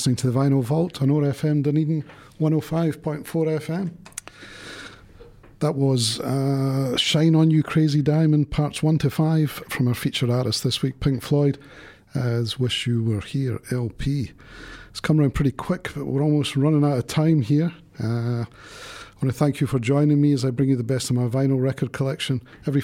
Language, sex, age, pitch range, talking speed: English, male, 40-59, 115-145 Hz, 180 wpm